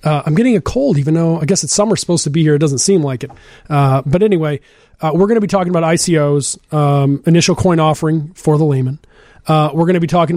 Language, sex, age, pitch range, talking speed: English, male, 30-49, 155-175 Hz, 255 wpm